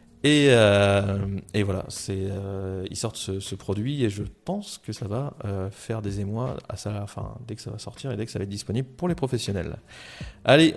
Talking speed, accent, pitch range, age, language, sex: 210 wpm, French, 105-130 Hz, 30-49, French, male